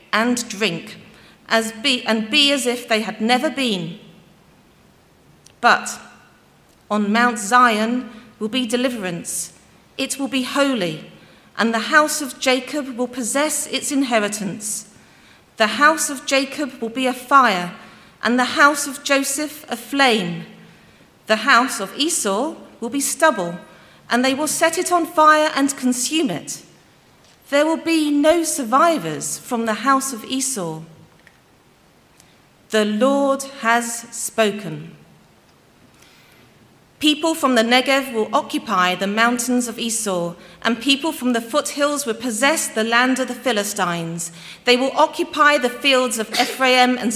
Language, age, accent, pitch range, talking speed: English, 40-59, British, 220-275 Hz, 135 wpm